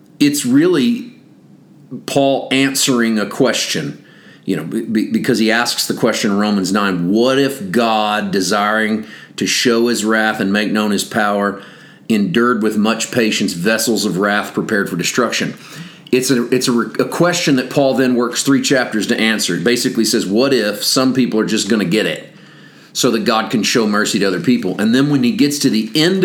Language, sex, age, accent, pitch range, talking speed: English, male, 40-59, American, 105-130 Hz, 185 wpm